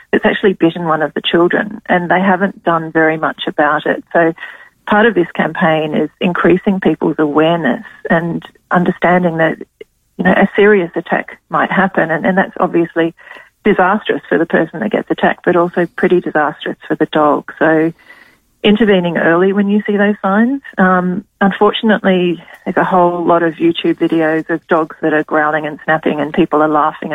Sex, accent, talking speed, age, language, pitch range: female, Australian, 175 wpm, 40-59, English, 160-190 Hz